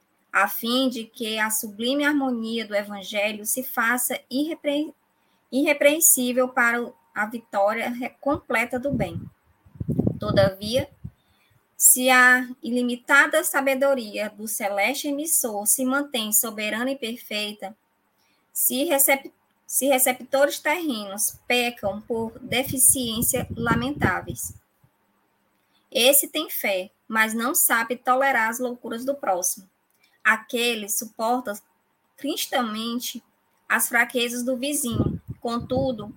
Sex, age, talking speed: male, 20-39, 95 wpm